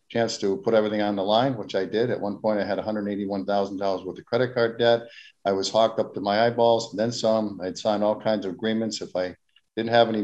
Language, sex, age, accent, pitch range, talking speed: English, male, 50-69, American, 100-115 Hz, 270 wpm